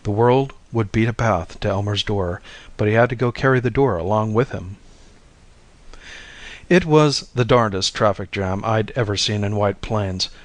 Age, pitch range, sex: 50-69, 100-125 Hz, male